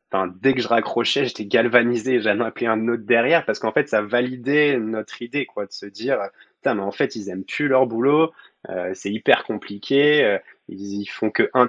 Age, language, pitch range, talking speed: 20-39, French, 100-125 Hz, 215 wpm